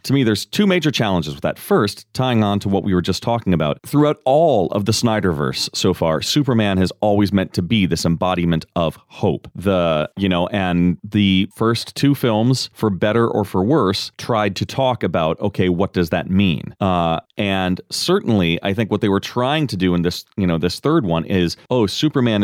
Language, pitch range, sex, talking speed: English, 90-120 Hz, male, 210 wpm